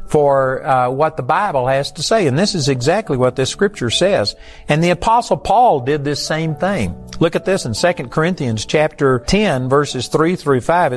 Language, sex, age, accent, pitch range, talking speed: English, male, 50-69, American, 130-175 Hz, 195 wpm